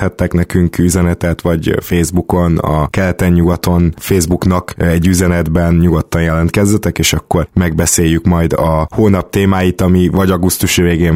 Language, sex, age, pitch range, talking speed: Hungarian, male, 20-39, 90-105 Hz, 120 wpm